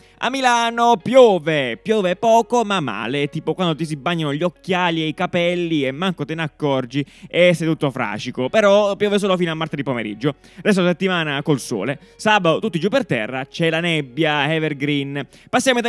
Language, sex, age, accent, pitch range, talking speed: Italian, male, 20-39, native, 150-205 Hz, 180 wpm